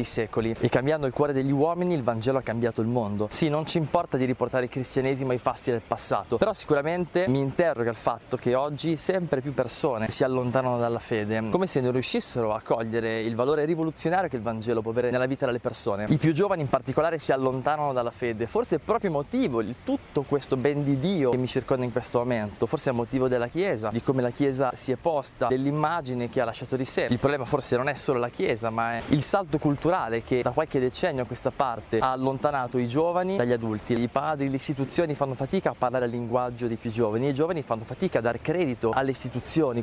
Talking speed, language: 225 wpm, Italian